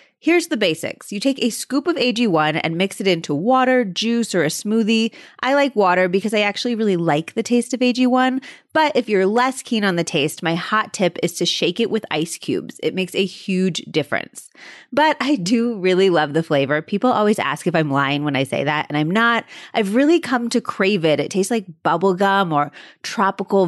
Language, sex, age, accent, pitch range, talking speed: English, female, 30-49, American, 180-250 Hz, 220 wpm